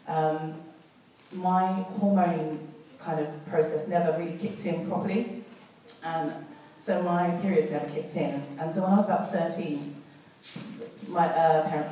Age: 30-49